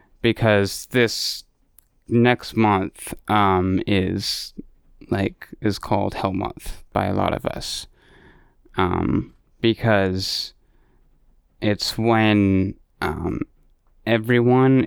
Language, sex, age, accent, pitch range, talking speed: English, male, 20-39, American, 95-110 Hz, 90 wpm